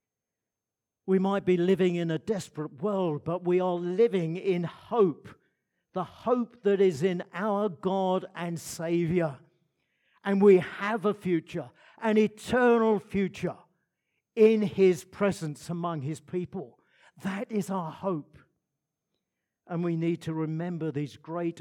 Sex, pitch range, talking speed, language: male, 155-200 Hz, 135 wpm, English